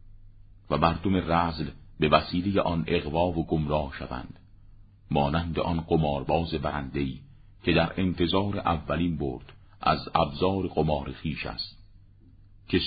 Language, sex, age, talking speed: Persian, male, 50-69, 115 wpm